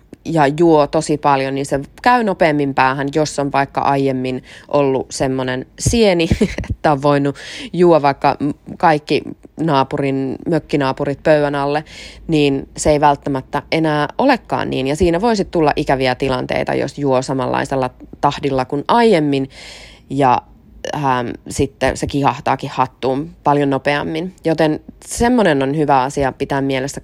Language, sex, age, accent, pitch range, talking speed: Finnish, female, 20-39, native, 135-160 Hz, 135 wpm